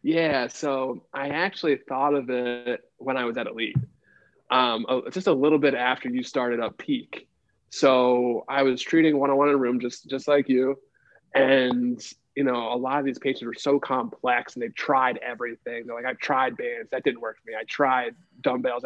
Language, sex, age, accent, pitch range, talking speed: English, male, 20-39, American, 125-155 Hz, 195 wpm